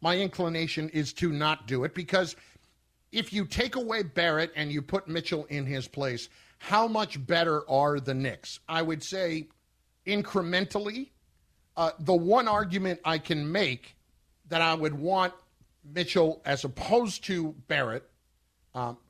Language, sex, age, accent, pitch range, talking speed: English, male, 50-69, American, 130-180 Hz, 150 wpm